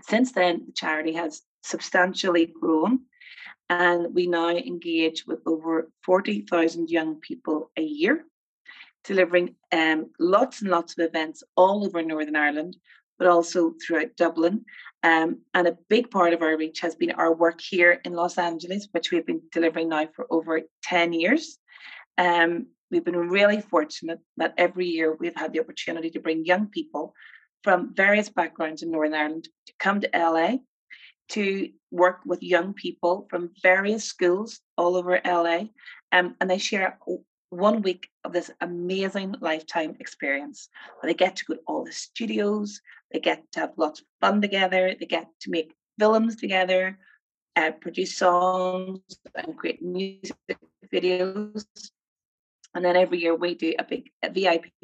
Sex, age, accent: female, 30-49, Irish